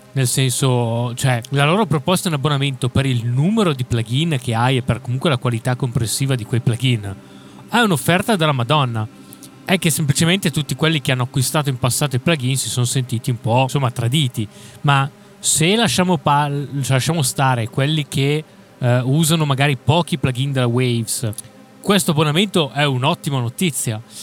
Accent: native